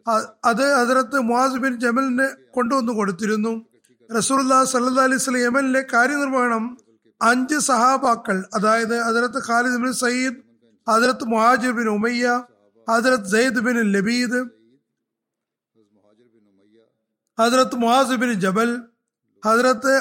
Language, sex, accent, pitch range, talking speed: Malayalam, male, native, 215-265 Hz, 65 wpm